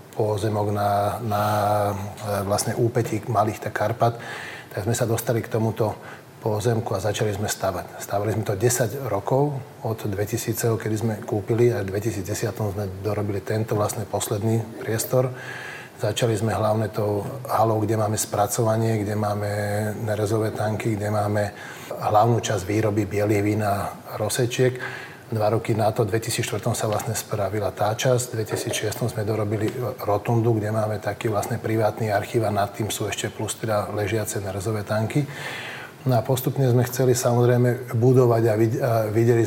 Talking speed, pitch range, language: 150 wpm, 105-120 Hz, Slovak